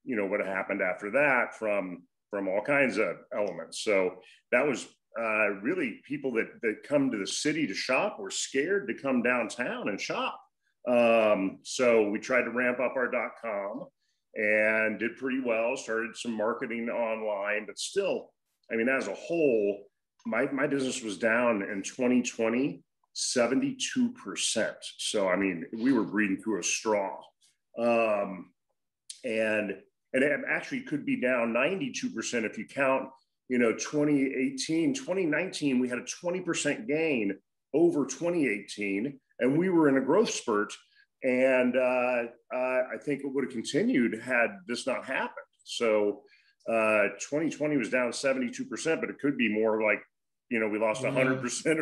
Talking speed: 155 wpm